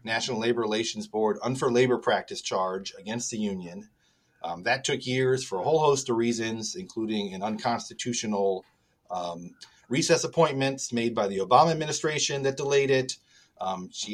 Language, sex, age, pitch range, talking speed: English, male, 30-49, 110-140 Hz, 155 wpm